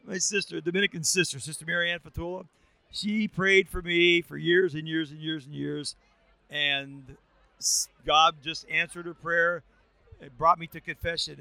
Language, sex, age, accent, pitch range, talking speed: English, male, 50-69, American, 155-190 Hz, 160 wpm